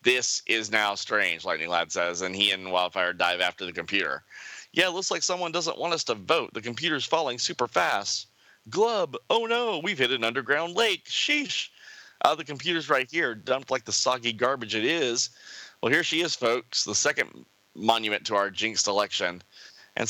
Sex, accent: male, American